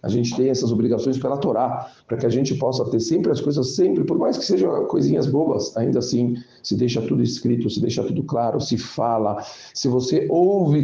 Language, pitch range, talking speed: Portuguese, 115-135 Hz, 210 wpm